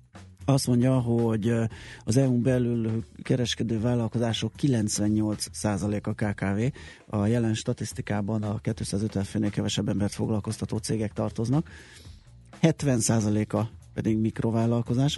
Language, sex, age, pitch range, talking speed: Hungarian, male, 30-49, 105-125 Hz, 100 wpm